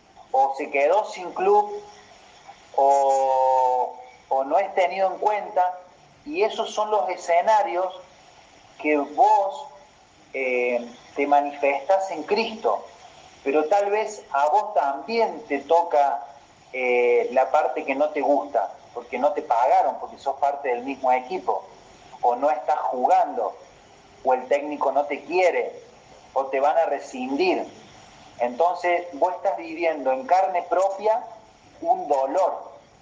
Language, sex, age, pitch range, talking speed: Spanish, male, 40-59, 135-185 Hz, 135 wpm